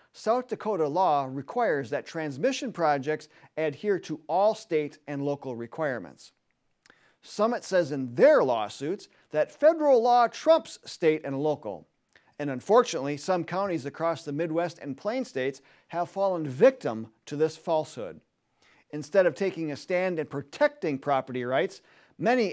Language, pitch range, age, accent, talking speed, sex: English, 145-200 Hz, 40-59, American, 140 wpm, male